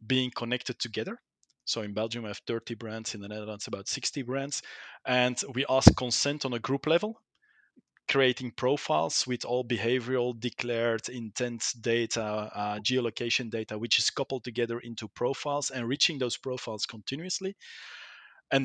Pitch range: 115-140 Hz